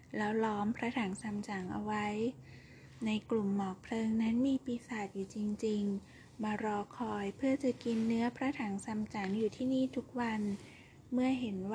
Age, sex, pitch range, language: 20-39, female, 205-240 Hz, Thai